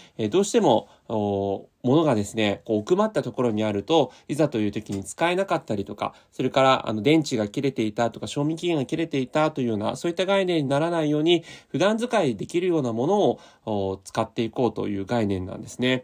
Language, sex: Japanese, male